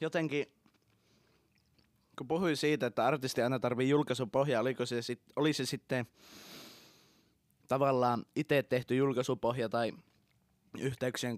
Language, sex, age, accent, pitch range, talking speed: Finnish, male, 20-39, native, 120-145 Hz, 110 wpm